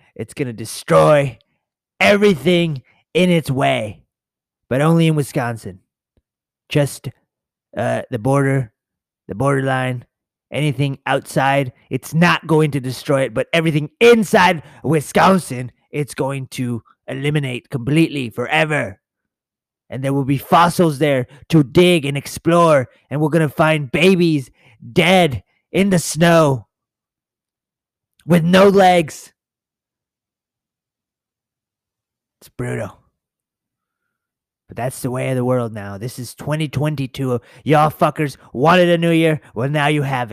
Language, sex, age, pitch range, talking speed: English, male, 30-49, 120-155 Hz, 120 wpm